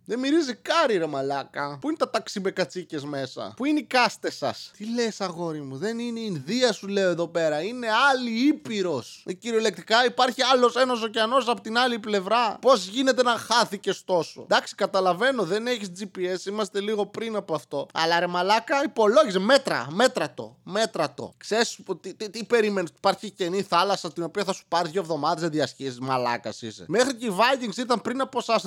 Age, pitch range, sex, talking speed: 20-39, 160-235 Hz, male, 190 wpm